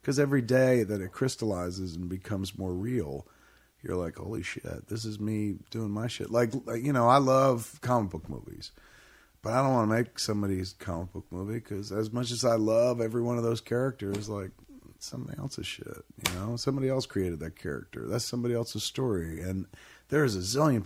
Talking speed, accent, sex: 200 wpm, American, male